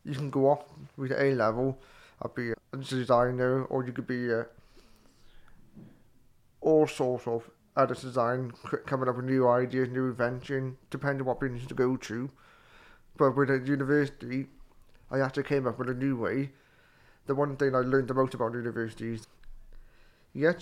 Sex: male